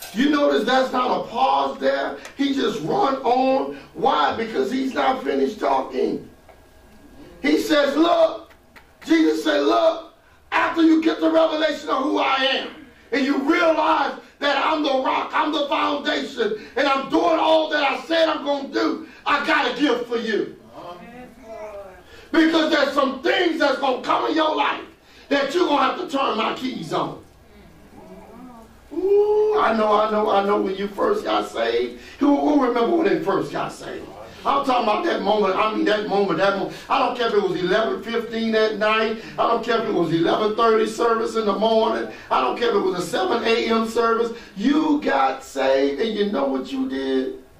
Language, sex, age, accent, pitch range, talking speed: English, male, 40-59, American, 205-300 Hz, 190 wpm